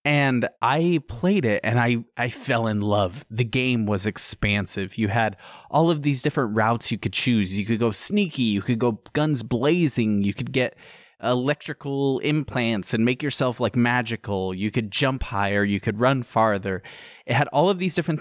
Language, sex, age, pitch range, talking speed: English, male, 20-39, 110-140 Hz, 190 wpm